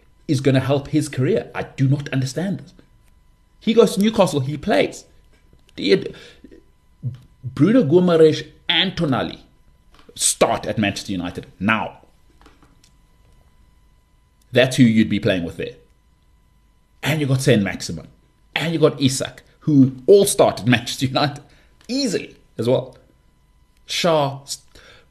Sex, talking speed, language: male, 125 wpm, English